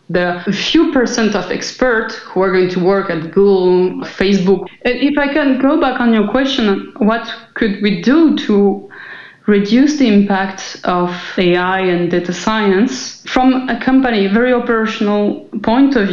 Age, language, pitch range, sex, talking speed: 30-49, English, 195-245 Hz, female, 155 wpm